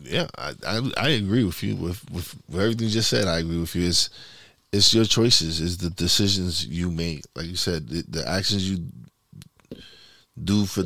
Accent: American